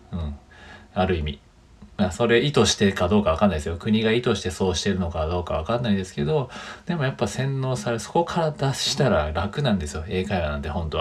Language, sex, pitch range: Japanese, male, 90-125 Hz